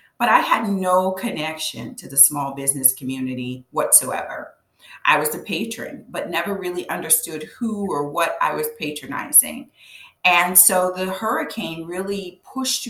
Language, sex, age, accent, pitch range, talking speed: English, female, 40-59, American, 150-195 Hz, 145 wpm